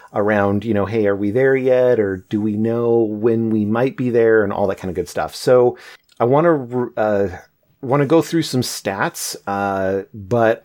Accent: American